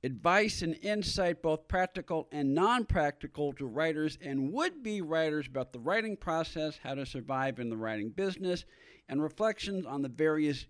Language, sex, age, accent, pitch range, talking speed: English, male, 50-69, American, 135-180 Hz, 155 wpm